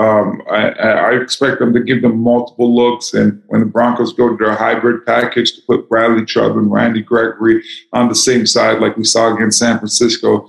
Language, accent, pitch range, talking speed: English, American, 110-120 Hz, 205 wpm